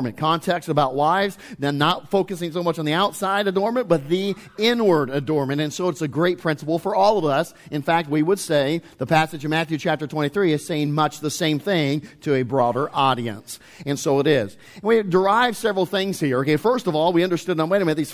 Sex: male